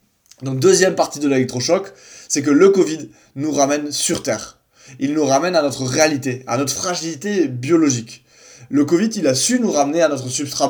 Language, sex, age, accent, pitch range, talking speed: French, male, 20-39, French, 125-160 Hz, 185 wpm